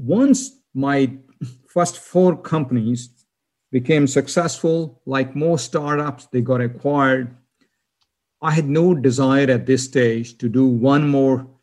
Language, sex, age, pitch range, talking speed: English, male, 50-69, 125-160 Hz, 125 wpm